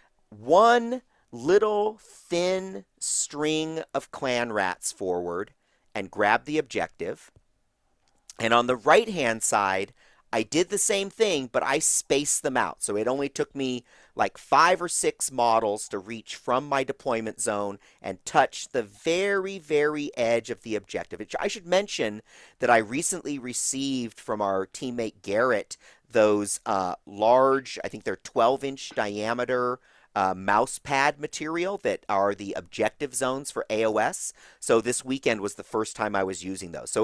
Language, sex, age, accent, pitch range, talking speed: English, male, 40-59, American, 110-160 Hz, 155 wpm